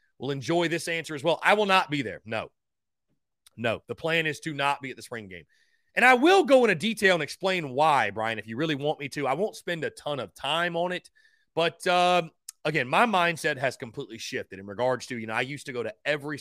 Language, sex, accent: English, male, American